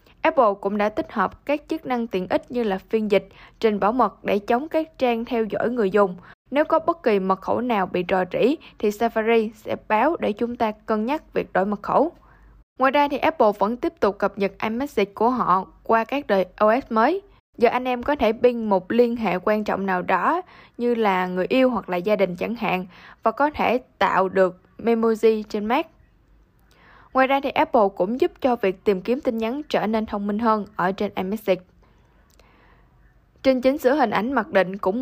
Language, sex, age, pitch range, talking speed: Vietnamese, female, 10-29, 200-260 Hz, 210 wpm